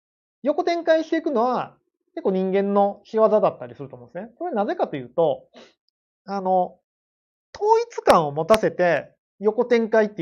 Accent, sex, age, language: native, male, 30-49, Japanese